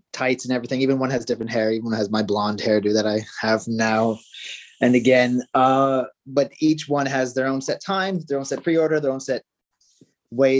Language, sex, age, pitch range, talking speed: English, male, 30-49, 120-145 Hz, 210 wpm